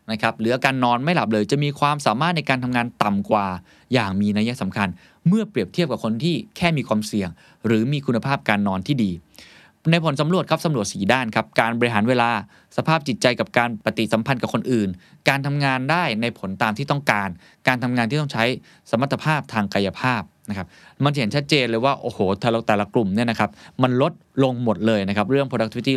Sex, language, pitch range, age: male, Thai, 110-155 Hz, 20-39